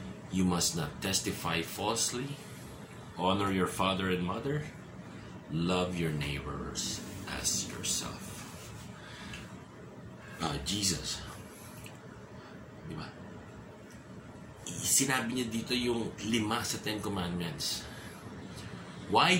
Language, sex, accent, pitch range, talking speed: English, male, Filipino, 90-140 Hz, 85 wpm